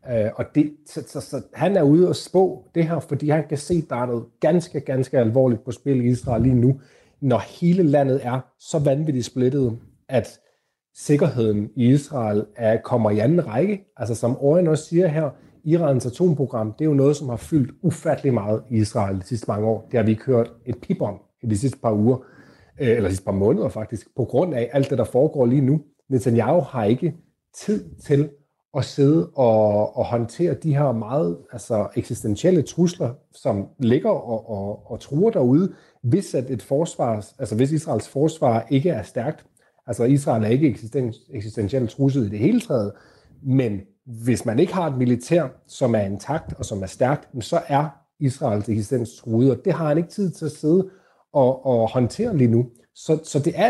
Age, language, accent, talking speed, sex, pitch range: 30-49, Danish, native, 195 wpm, male, 115-155 Hz